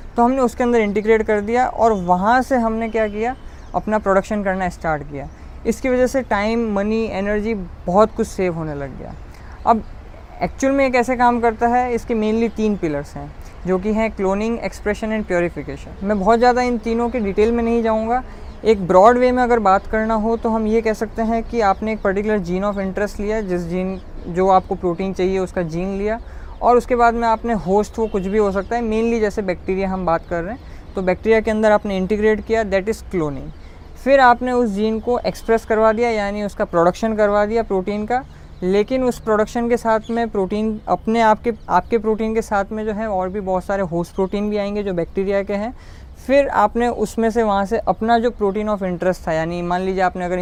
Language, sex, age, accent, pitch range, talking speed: Hindi, female, 20-39, native, 190-230 Hz, 215 wpm